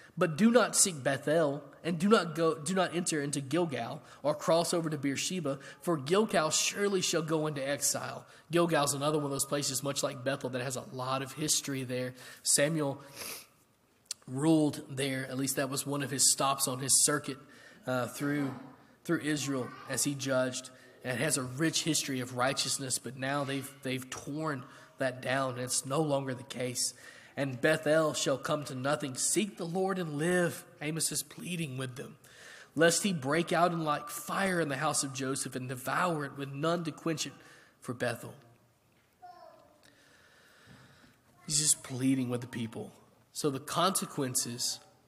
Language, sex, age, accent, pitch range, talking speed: English, male, 20-39, American, 130-160 Hz, 175 wpm